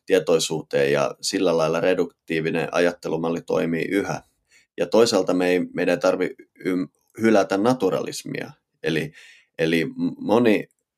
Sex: male